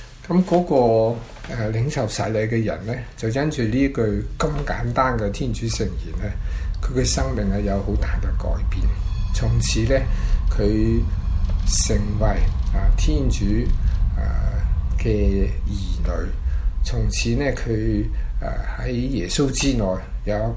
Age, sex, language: 50-69, male, Chinese